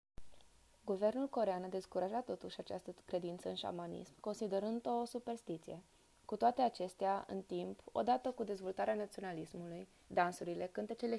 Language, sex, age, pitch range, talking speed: Romanian, female, 20-39, 180-225 Hz, 120 wpm